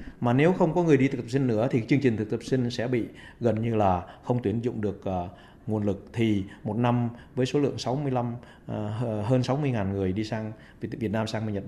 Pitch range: 110-140 Hz